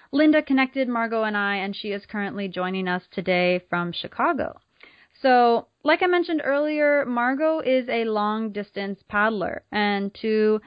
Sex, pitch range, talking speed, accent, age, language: female, 200-260 Hz, 150 wpm, American, 20-39, English